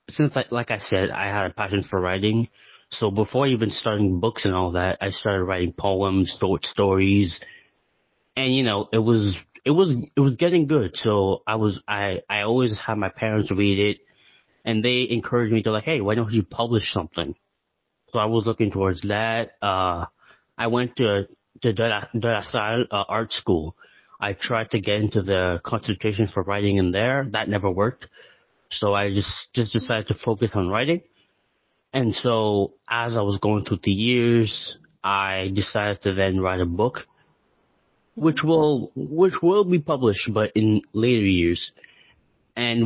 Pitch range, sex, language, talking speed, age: 100-120 Hz, male, English, 175 wpm, 30-49